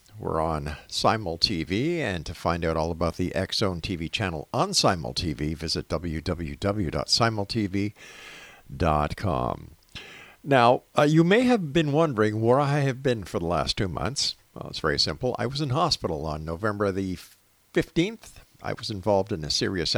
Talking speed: 160 wpm